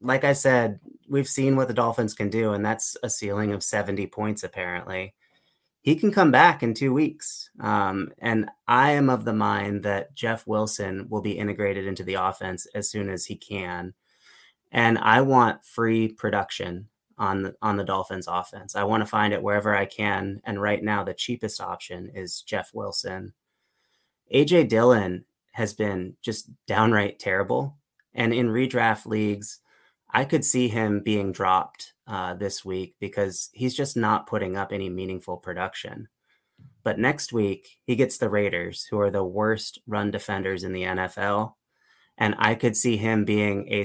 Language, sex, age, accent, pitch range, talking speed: English, male, 30-49, American, 95-115 Hz, 170 wpm